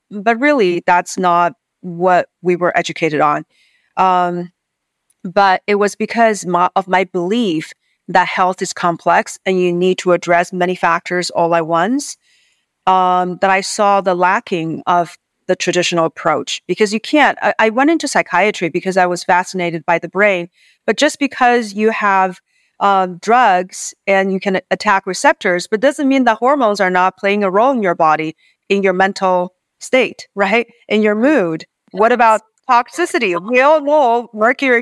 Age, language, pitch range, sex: 40-59, English, 180-240 Hz, female